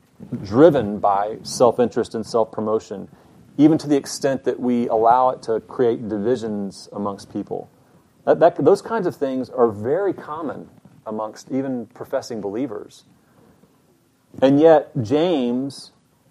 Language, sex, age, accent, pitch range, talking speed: English, male, 30-49, American, 115-145 Hz, 120 wpm